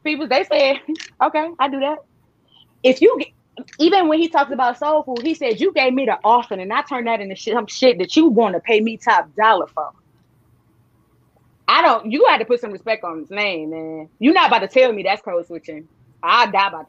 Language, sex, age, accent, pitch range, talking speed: English, female, 20-39, American, 210-310 Hz, 230 wpm